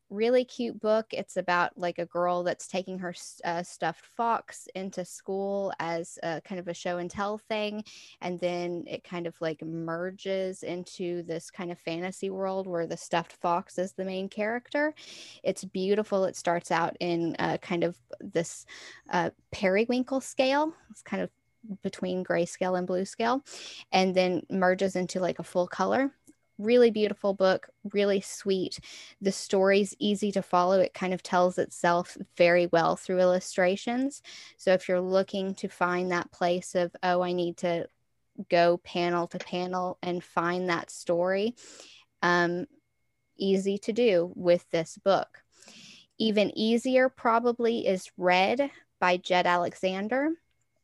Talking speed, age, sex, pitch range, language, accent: 150 wpm, 10-29, female, 175-210 Hz, English, American